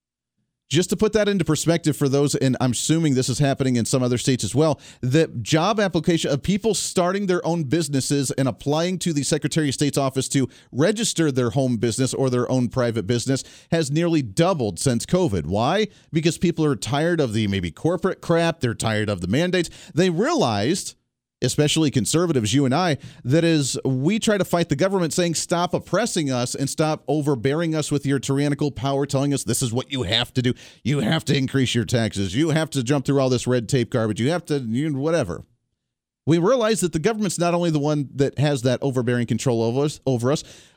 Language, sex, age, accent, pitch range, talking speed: English, male, 40-59, American, 125-165 Hz, 205 wpm